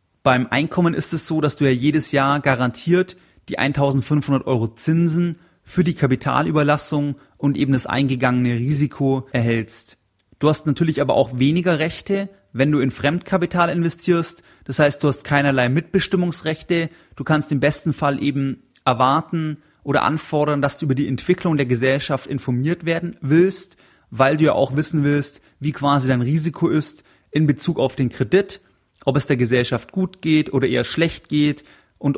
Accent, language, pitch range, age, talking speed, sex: German, German, 130-155 Hz, 30-49, 165 wpm, male